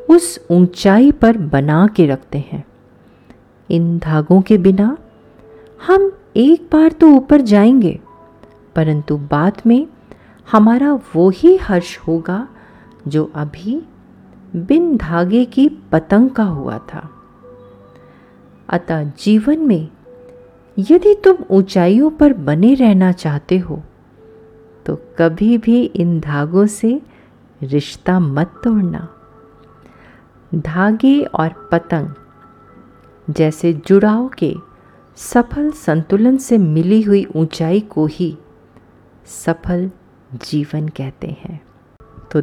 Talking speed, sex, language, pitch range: 105 wpm, female, Hindi, 150-220 Hz